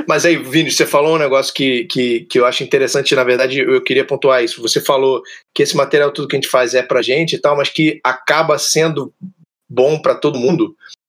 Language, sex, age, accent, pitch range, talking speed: Portuguese, male, 20-39, Brazilian, 150-245 Hz, 220 wpm